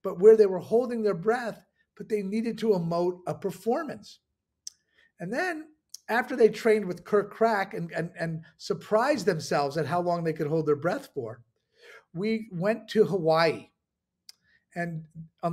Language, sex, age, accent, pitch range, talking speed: Italian, male, 50-69, American, 175-230 Hz, 160 wpm